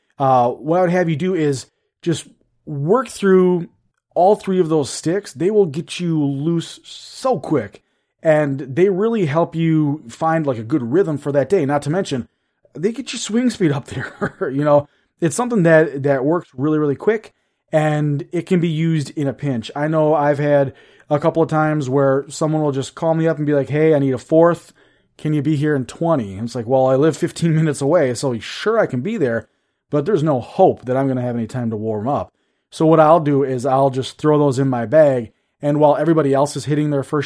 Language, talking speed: English, 230 wpm